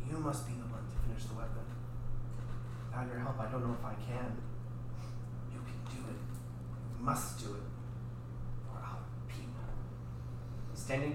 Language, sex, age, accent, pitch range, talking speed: English, male, 30-49, American, 115-125 Hz, 165 wpm